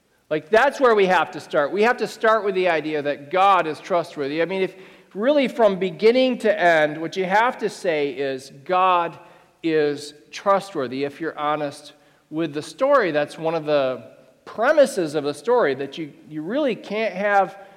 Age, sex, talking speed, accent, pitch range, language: 40-59, male, 185 wpm, American, 160-230 Hz, English